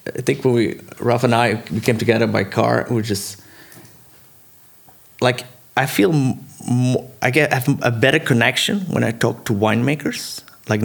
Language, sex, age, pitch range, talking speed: English, male, 30-49, 105-120 Hz, 185 wpm